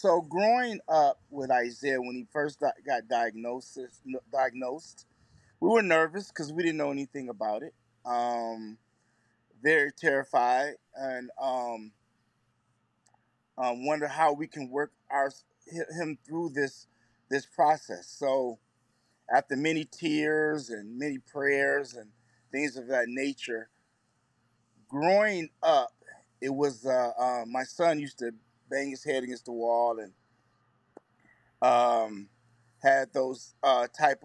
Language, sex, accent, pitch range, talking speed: English, male, American, 120-155 Hz, 125 wpm